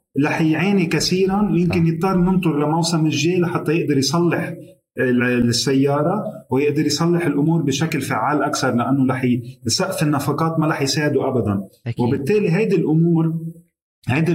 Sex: male